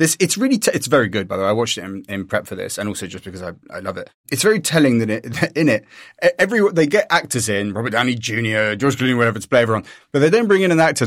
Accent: British